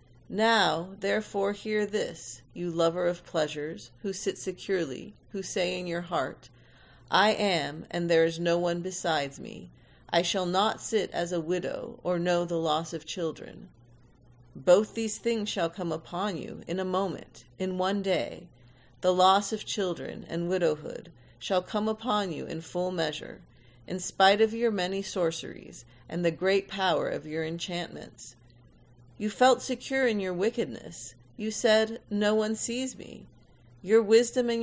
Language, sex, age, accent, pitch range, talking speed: English, female, 40-59, American, 165-210 Hz, 160 wpm